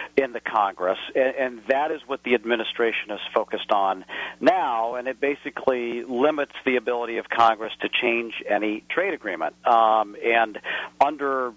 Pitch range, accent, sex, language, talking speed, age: 115-145 Hz, American, male, English, 150 wpm, 50-69